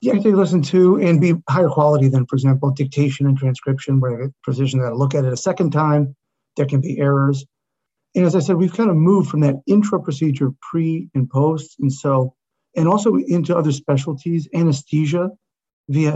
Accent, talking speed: American, 195 wpm